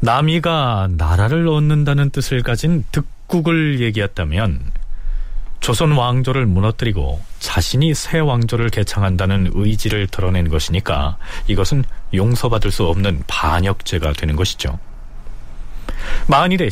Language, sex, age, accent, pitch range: Korean, male, 40-59, native, 90-150 Hz